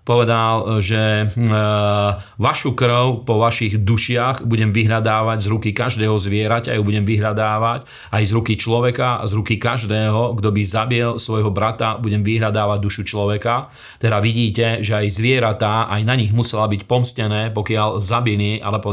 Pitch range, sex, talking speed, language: 105-120 Hz, male, 145 wpm, Slovak